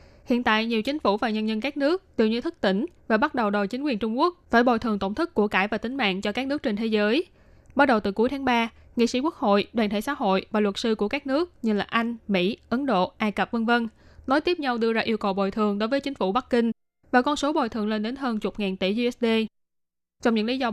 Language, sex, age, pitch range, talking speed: Vietnamese, female, 10-29, 210-255 Hz, 285 wpm